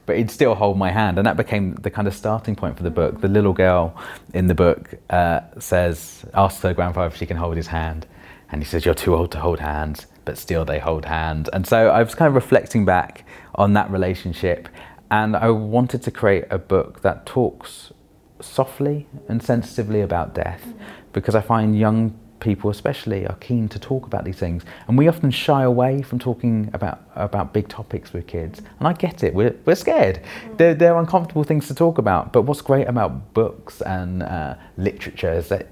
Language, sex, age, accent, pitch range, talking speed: English, male, 30-49, British, 90-120 Hz, 205 wpm